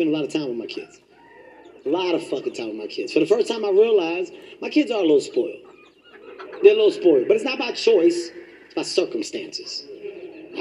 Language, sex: English, male